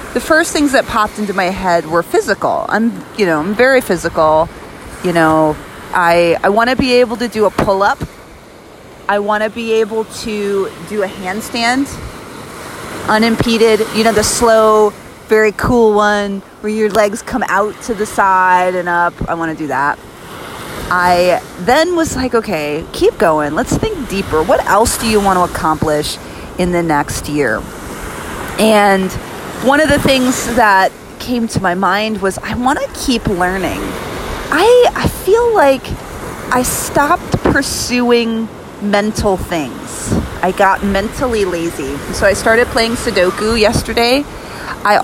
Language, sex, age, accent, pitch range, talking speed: English, female, 30-49, American, 180-235 Hz, 155 wpm